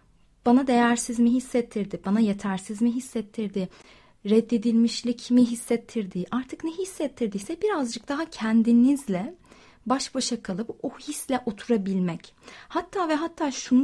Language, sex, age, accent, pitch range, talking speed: Turkish, female, 30-49, native, 215-260 Hz, 115 wpm